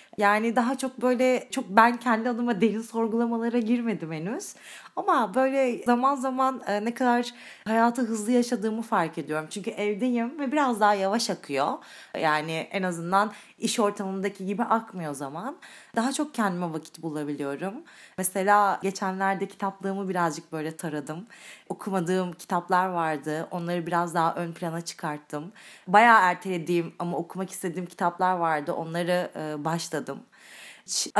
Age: 30-49